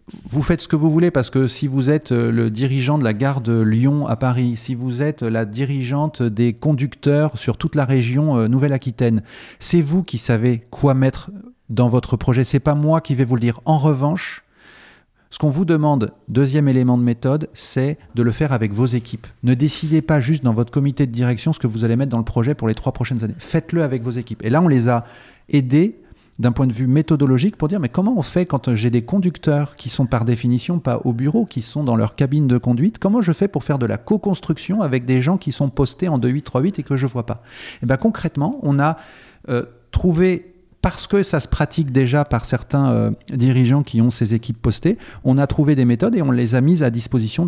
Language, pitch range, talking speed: French, 120-150 Hz, 235 wpm